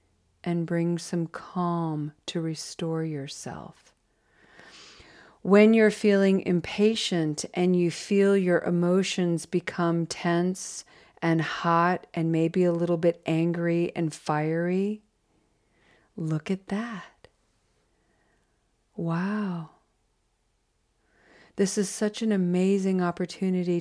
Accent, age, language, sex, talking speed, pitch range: American, 40-59, English, female, 95 wpm, 160-185 Hz